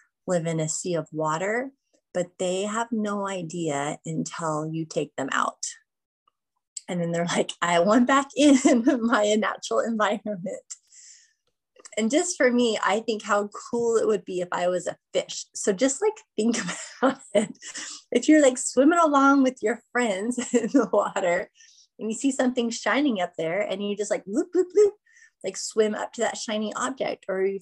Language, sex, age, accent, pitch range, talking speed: English, female, 20-39, American, 180-245 Hz, 180 wpm